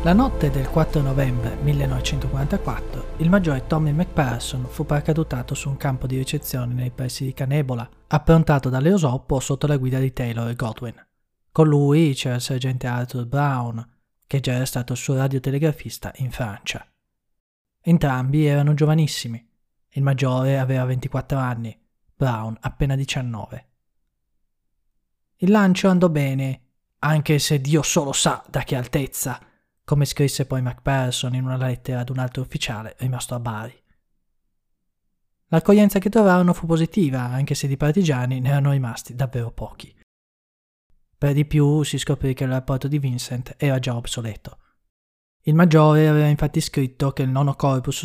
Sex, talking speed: male, 150 wpm